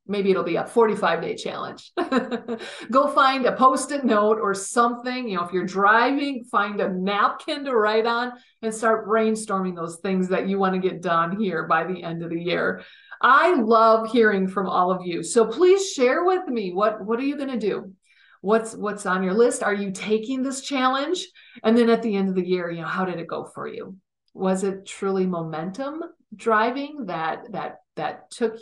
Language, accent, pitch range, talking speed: English, American, 185-240 Hz, 200 wpm